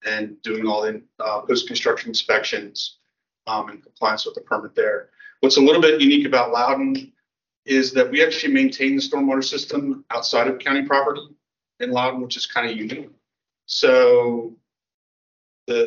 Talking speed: 165 wpm